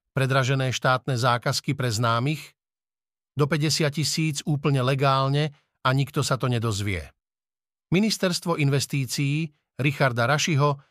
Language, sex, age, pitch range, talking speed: Slovak, male, 50-69, 130-155 Hz, 105 wpm